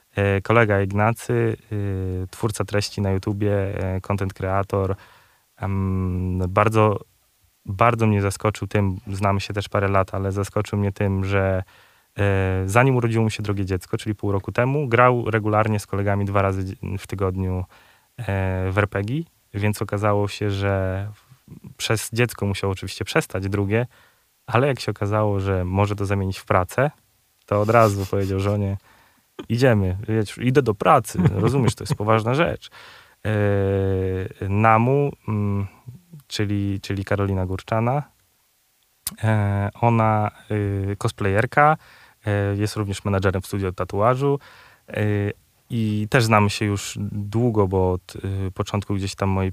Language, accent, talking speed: Polish, native, 125 wpm